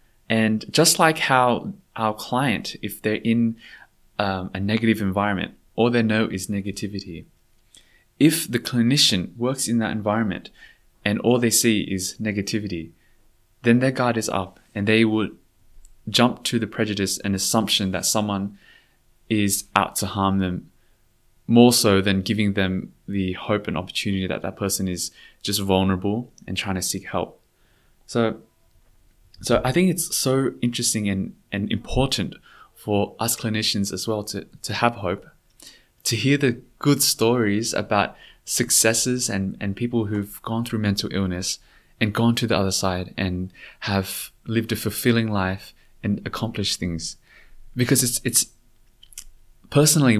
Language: English